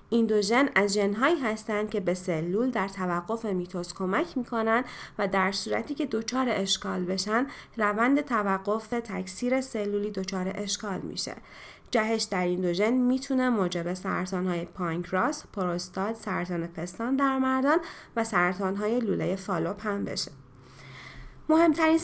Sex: female